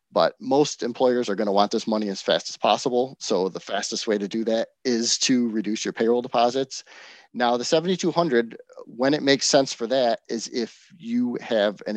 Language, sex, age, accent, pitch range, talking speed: English, male, 30-49, American, 105-130 Hz, 200 wpm